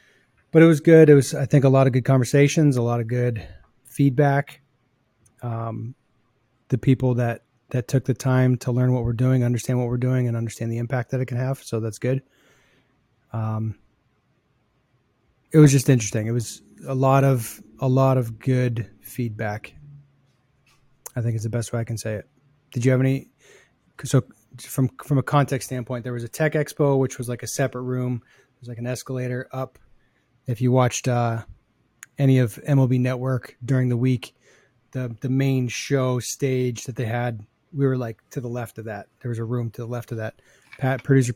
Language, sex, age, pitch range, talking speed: English, male, 30-49, 120-135 Hz, 195 wpm